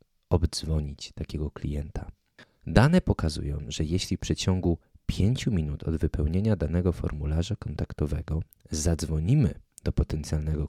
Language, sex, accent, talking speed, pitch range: Polish, male, native, 105 wpm, 75-100 Hz